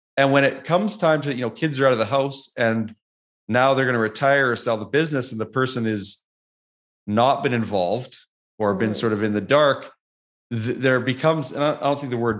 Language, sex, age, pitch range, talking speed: English, male, 30-49, 110-140 Hz, 225 wpm